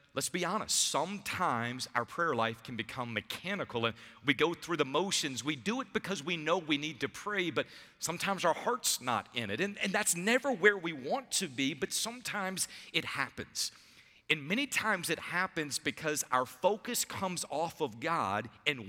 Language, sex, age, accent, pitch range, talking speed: English, male, 50-69, American, 120-190 Hz, 185 wpm